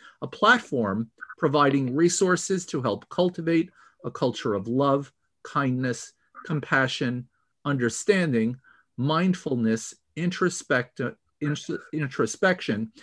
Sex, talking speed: male, 75 wpm